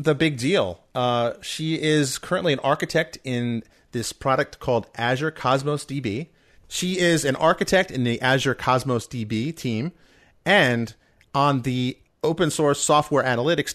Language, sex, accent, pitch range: English, male, American, 115-160 Hz